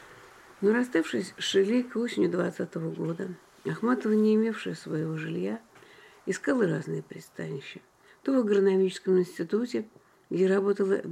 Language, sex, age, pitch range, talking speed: Russian, female, 50-69, 175-210 Hz, 120 wpm